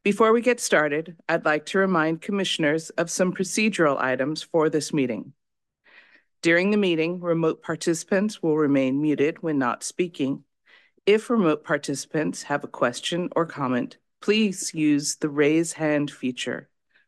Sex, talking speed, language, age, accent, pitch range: female, 145 wpm, English, 50-69, American, 150-185 Hz